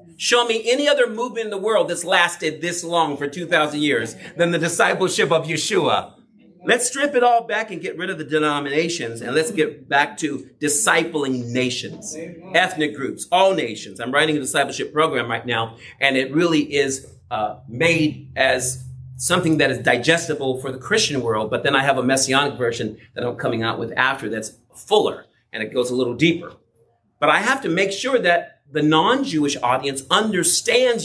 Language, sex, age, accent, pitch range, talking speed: English, male, 40-59, American, 135-210 Hz, 185 wpm